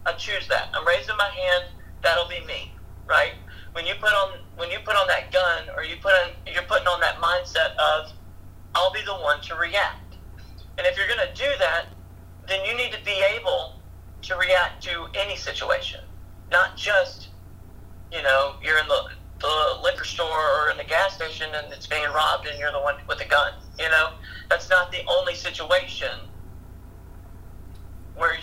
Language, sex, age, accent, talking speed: English, male, 40-59, American, 190 wpm